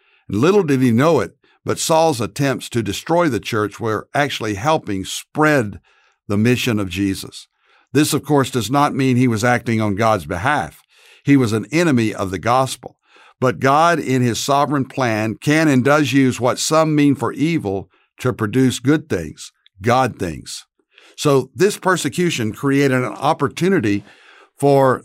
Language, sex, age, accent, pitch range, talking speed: English, male, 60-79, American, 115-150 Hz, 160 wpm